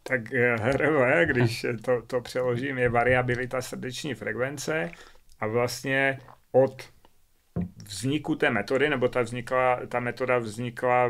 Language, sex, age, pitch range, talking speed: Czech, male, 40-59, 120-130 Hz, 115 wpm